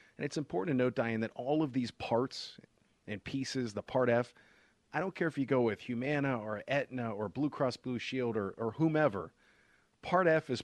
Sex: male